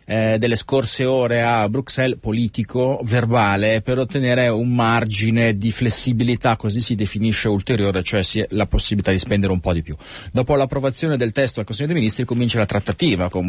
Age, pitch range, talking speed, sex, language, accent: 30-49, 105-125 Hz, 175 wpm, male, Italian, native